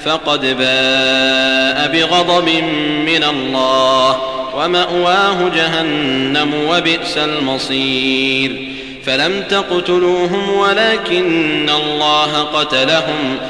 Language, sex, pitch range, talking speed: Arabic, male, 135-175 Hz, 60 wpm